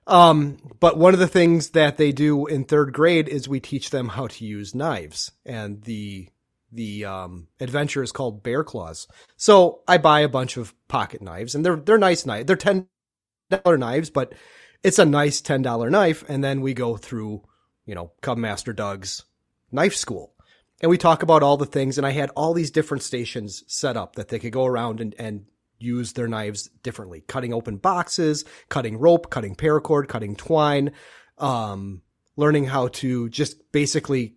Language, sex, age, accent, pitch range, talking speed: English, male, 30-49, American, 115-160 Hz, 180 wpm